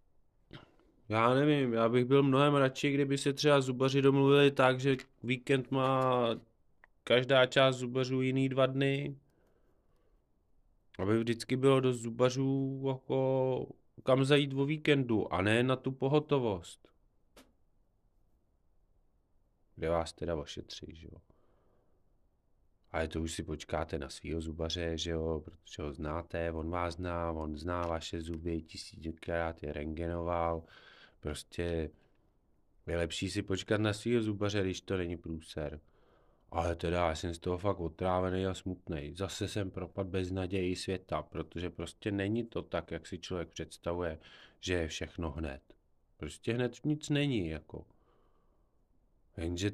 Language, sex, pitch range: Czech, male, 85-115 Hz